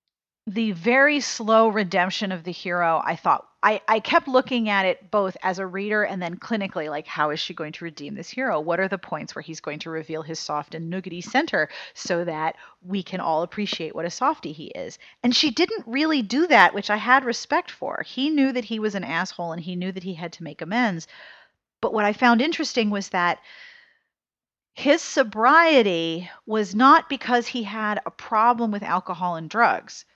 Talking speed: 205 wpm